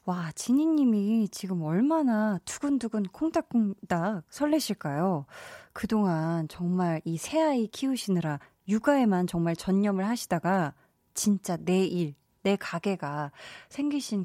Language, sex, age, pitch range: Korean, female, 20-39, 180-255 Hz